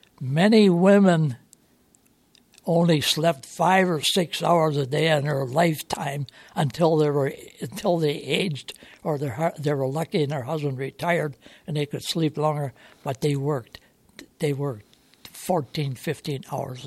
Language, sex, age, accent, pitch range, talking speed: English, male, 60-79, American, 145-175 Hz, 140 wpm